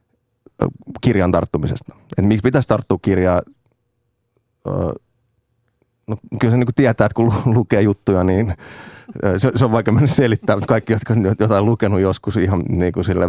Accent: native